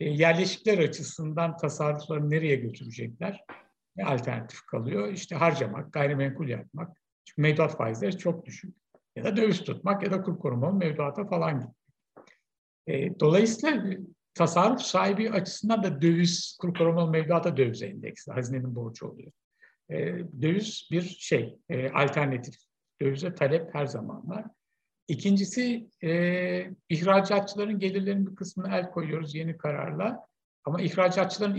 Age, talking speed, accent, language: 60-79, 120 wpm, native, Turkish